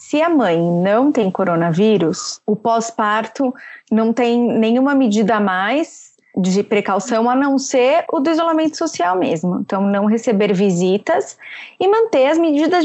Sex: female